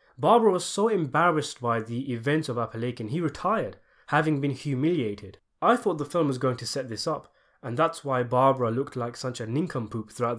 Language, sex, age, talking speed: English, male, 20-39, 195 wpm